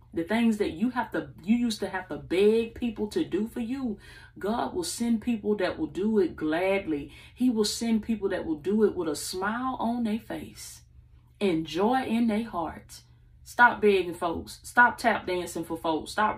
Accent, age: American, 30-49